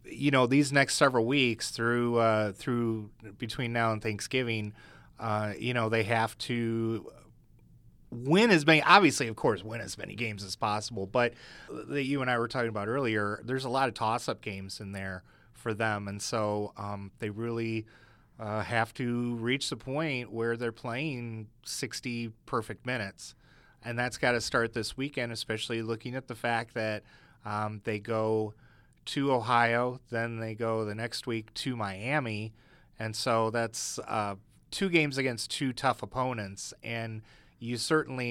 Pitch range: 110-125 Hz